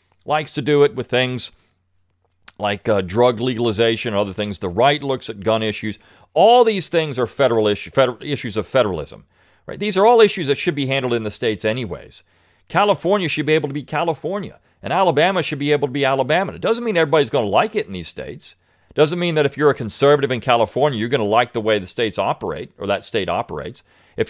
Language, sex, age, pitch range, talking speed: English, male, 40-59, 105-155 Hz, 220 wpm